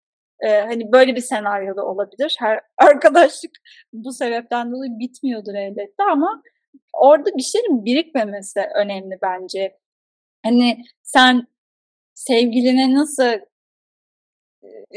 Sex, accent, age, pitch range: female, native, 10-29, 230-295 Hz